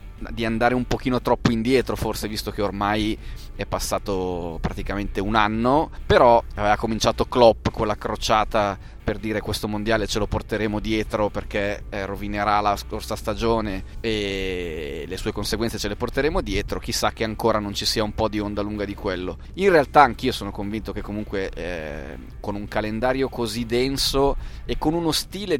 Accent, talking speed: native, 170 wpm